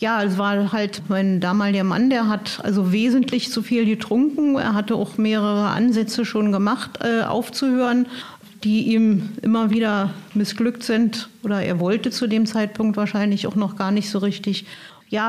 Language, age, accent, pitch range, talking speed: German, 50-69, German, 210-245 Hz, 170 wpm